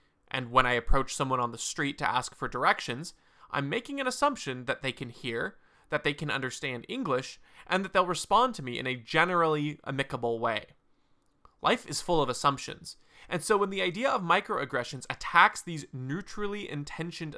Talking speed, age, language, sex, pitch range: 175 wpm, 20-39, English, male, 135-190 Hz